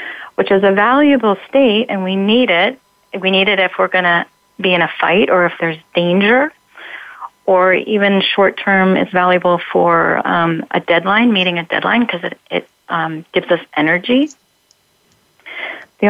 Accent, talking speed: American, 170 wpm